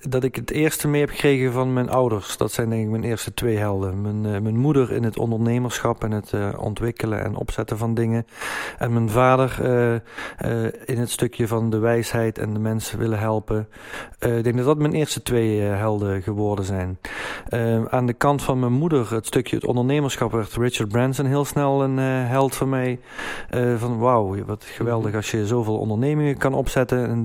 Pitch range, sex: 110-130 Hz, male